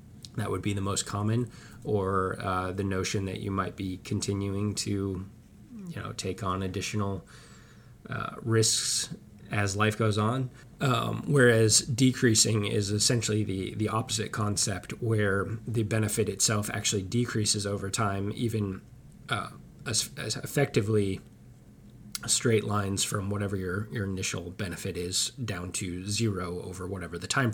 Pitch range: 95-110 Hz